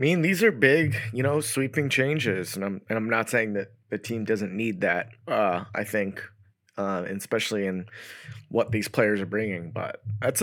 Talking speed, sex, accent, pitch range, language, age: 195 wpm, male, American, 100-125 Hz, English, 20-39